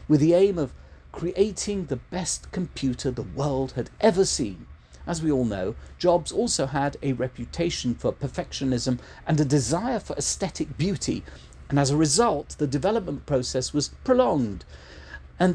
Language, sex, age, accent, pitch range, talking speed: English, male, 50-69, British, 105-170 Hz, 155 wpm